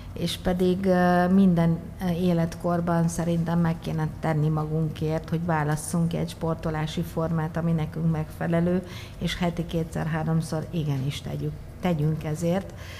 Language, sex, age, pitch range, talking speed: Hungarian, female, 50-69, 160-180 Hz, 110 wpm